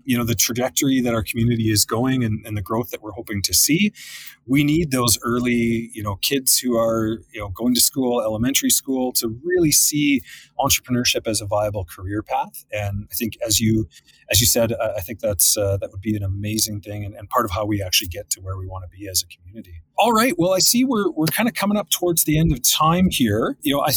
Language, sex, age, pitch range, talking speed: English, male, 30-49, 110-155 Hz, 245 wpm